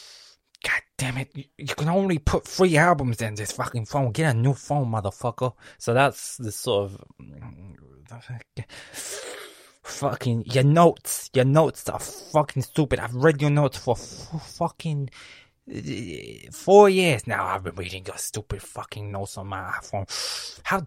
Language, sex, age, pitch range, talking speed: English, male, 20-39, 105-145 Hz, 155 wpm